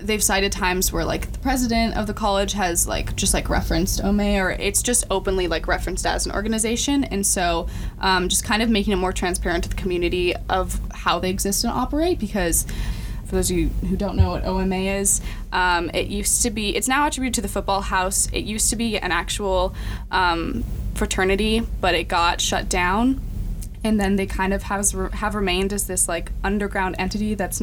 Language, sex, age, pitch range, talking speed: English, female, 10-29, 175-215 Hz, 205 wpm